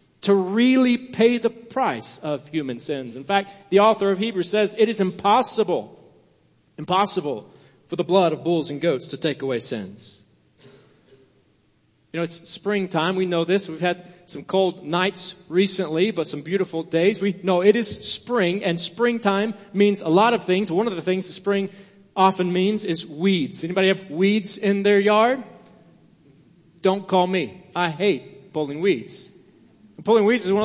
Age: 40-59